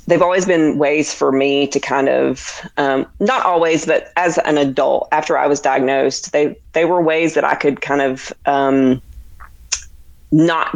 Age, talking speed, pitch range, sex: 30-49, 175 wpm, 140-170 Hz, female